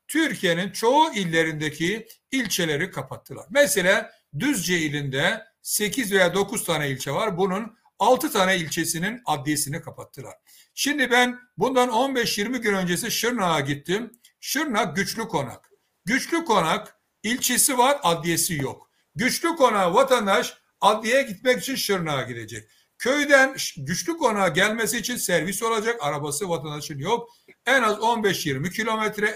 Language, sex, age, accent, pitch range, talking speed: Turkish, male, 60-79, native, 155-225 Hz, 120 wpm